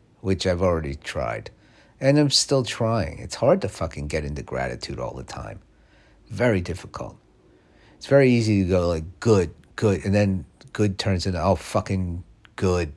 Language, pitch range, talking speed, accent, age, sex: English, 80-100 Hz, 165 wpm, American, 50-69, male